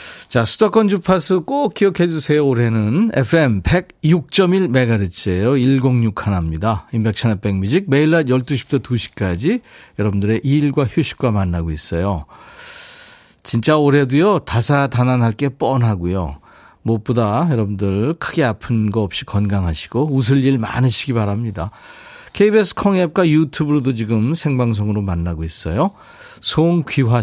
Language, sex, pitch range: Korean, male, 105-160 Hz